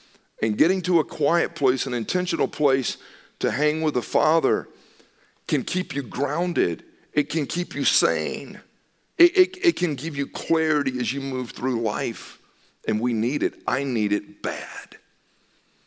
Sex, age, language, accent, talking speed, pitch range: male, 50-69, English, American, 165 wpm, 150-210 Hz